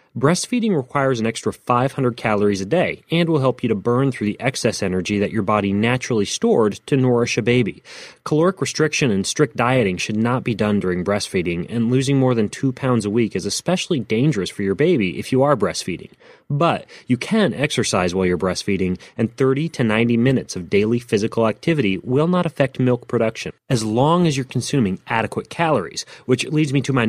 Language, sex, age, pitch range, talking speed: English, male, 30-49, 105-140 Hz, 195 wpm